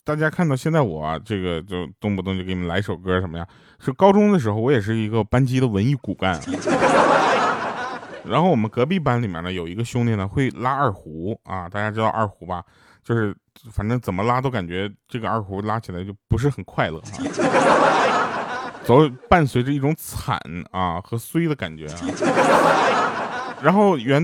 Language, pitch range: Chinese, 95-140 Hz